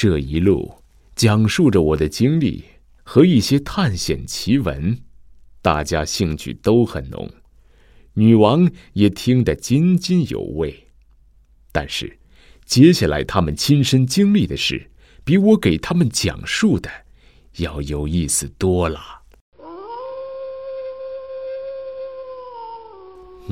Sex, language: male, Chinese